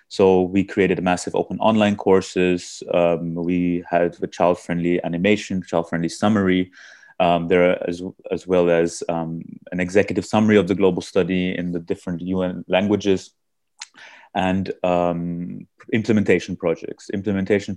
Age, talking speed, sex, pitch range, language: 30-49, 140 wpm, male, 85-105 Hz, English